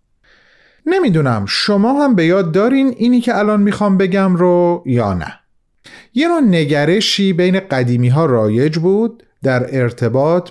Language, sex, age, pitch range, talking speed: Persian, male, 40-59, 125-200 Hz, 130 wpm